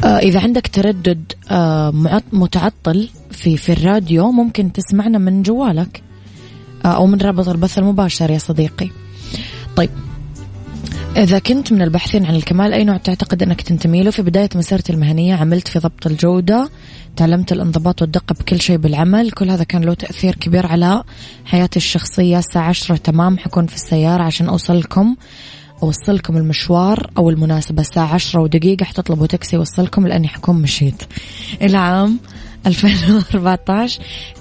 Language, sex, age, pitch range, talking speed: Arabic, female, 20-39, 160-190 Hz, 135 wpm